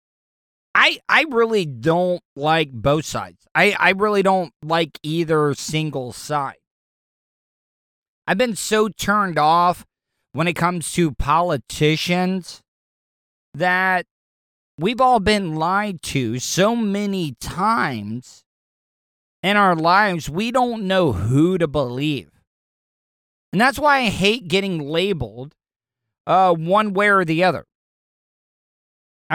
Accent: American